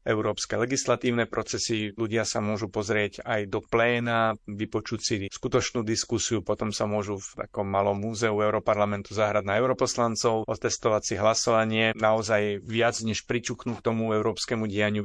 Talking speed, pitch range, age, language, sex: 140 wpm, 105-115 Hz, 30-49, Slovak, male